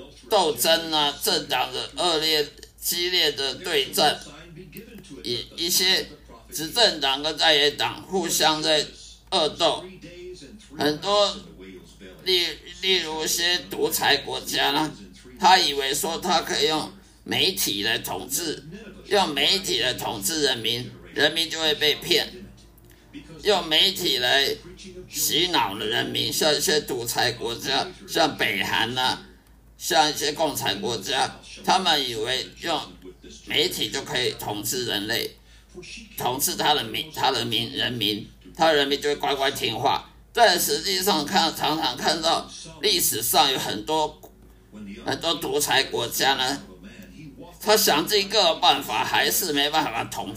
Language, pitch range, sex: Chinese, 145-195 Hz, male